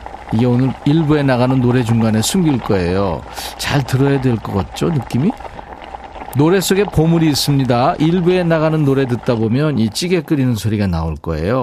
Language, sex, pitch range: Korean, male, 105-160 Hz